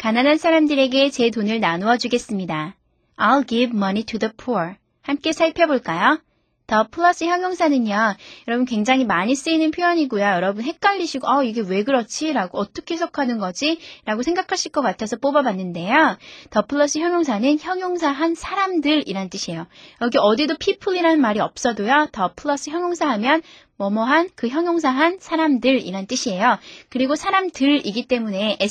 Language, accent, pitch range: Korean, native, 215-305 Hz